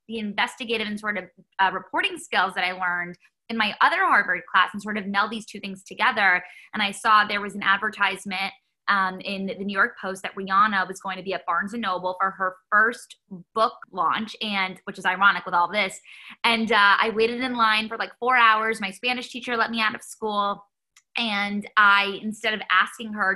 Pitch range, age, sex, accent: 190-220 Hz, 10-29, female, American